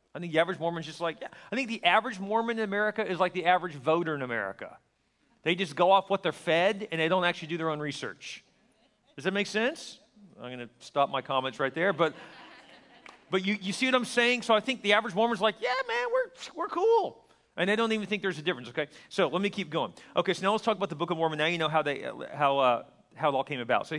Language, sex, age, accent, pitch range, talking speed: English, male, 40-59, American, 140-210 Hz, 265 wpm